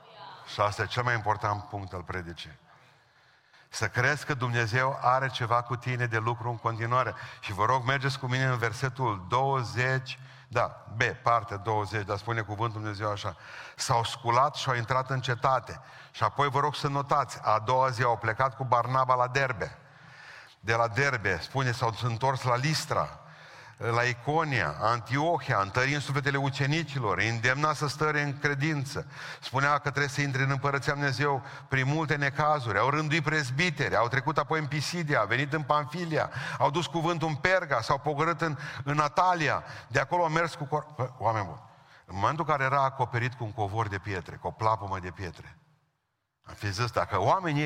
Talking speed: 180 wpm